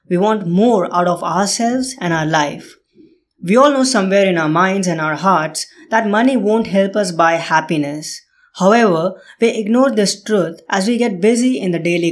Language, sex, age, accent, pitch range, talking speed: English, female, 20-39, Indian, 175-215 Hz, 190 wpm